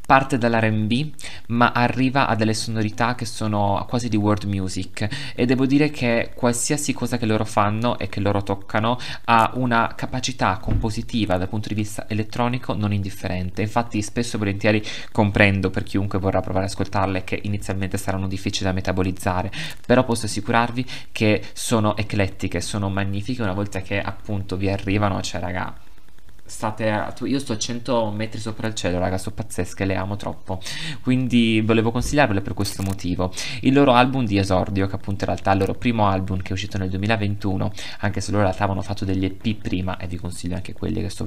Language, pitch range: Italian, 95-115 Hz